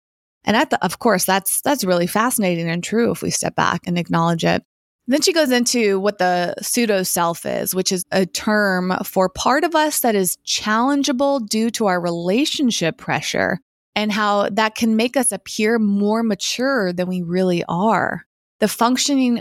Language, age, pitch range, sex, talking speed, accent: English, 20-39, 180-225 Hz, female, 180 wpm, American